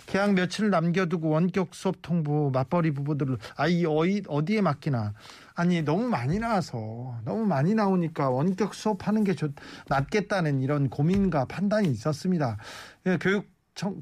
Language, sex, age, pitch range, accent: Korean, male, 40-59, 145-205 Hz, native